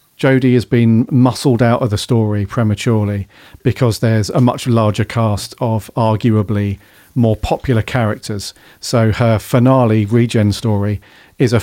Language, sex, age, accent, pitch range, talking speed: English, male, 40-59, British, 105-125 Hz, 140 wpm